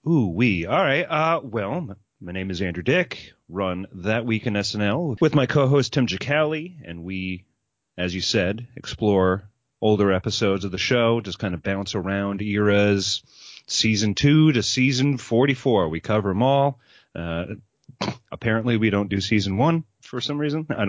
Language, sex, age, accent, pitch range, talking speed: English, male, 30-49, American, 95-130 Hz, 165 wpm